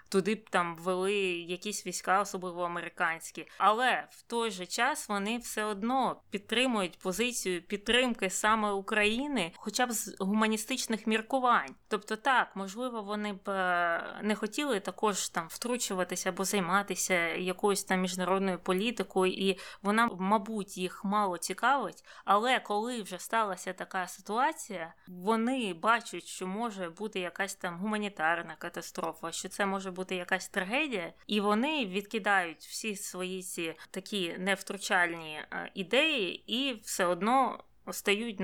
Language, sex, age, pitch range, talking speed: Ukrainian, female, 20-39, 185-225 Hz, 125 wpm